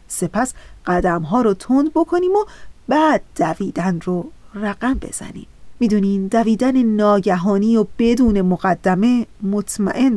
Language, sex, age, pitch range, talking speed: Persian, female, 40-59, 190-250 Hz, 110 wpm